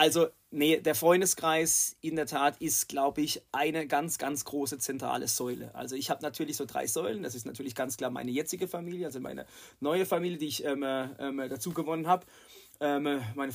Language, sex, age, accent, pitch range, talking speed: German, male, 30-49, German, 145-170 Hz, 195 wpm